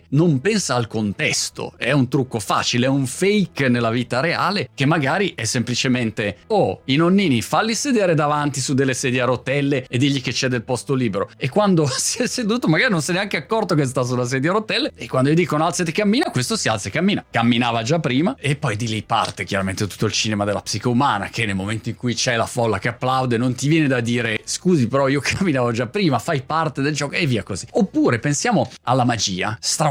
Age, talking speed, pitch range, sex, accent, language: 30-49, 230 wpm, 115-155 Hz, male, native, Italian